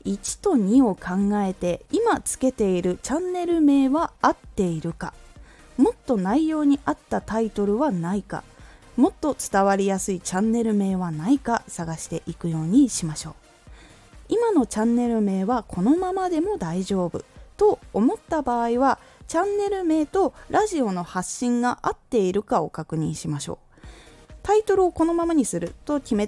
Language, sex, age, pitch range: Japanese, female, 20-39, 175-280 Hz